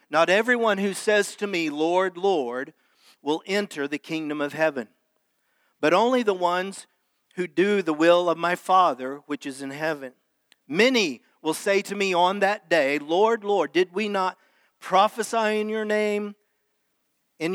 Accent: American